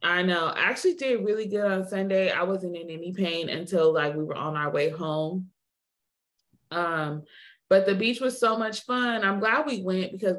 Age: 20-39